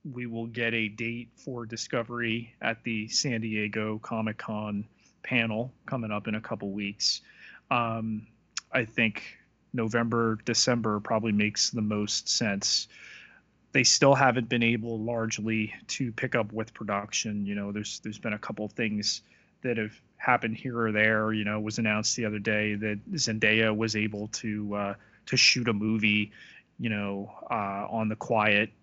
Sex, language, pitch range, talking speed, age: male, English, 105-120 Hz, 165 wpm, 30-49